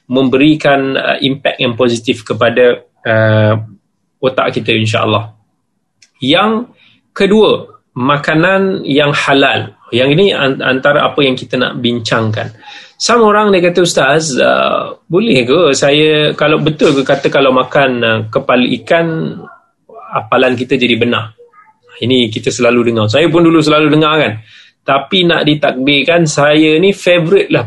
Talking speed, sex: 135 wpm, male